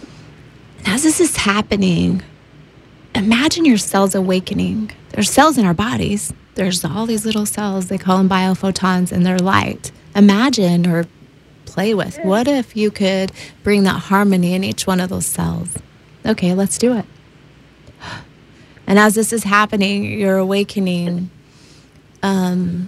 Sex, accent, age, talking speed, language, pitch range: female, American, 30-49, 140 wpm, English, 175-200 Hz